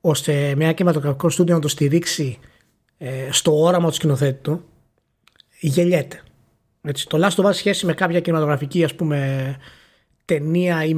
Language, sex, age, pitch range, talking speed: Greek, male, 20-39, 145-190 Hz, 115 wpm